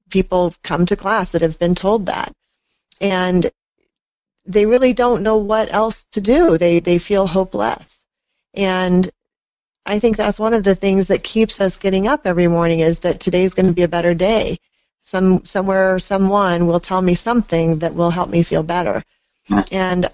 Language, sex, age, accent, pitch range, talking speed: English, female, 40-59, American, 170-200 Hz, 180 wpm